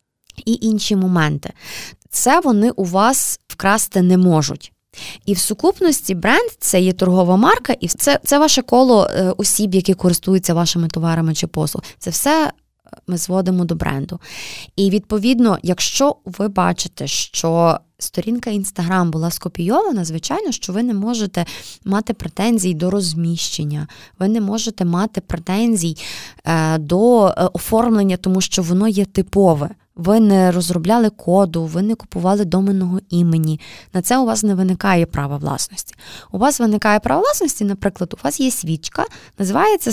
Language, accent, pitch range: Ukrainian, native, 175-220 Hz